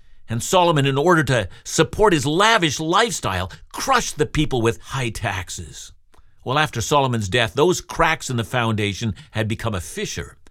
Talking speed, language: 160 wpm, English